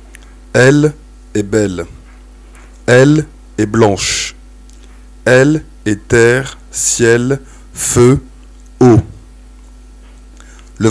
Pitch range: 90-130 Hz